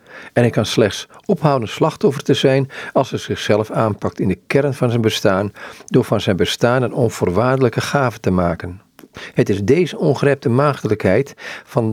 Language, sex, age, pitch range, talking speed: Dutch, male, 50-69, 100-135 Hz, 165 wpm